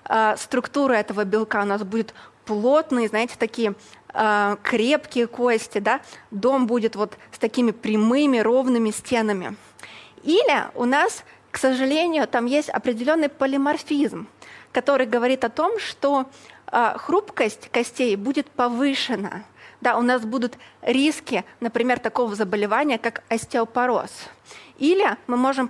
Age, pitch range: 20-39, 220-275 Hz